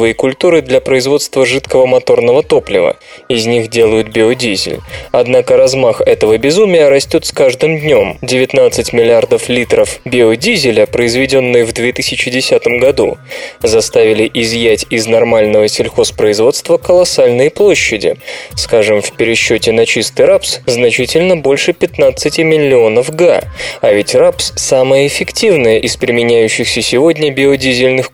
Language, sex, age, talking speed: Russian, male, 20-39, 115 wpm